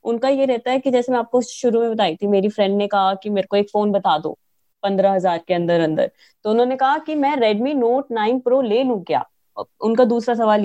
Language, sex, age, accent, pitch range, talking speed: Hindi, female, 20-39, native, 210-260 Hz, 240 wpm